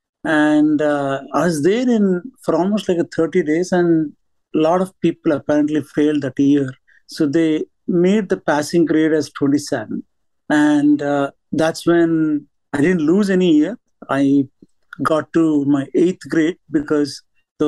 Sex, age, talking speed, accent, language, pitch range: male, 50-69, 155 wpm, Indian, English, 145-175 Hz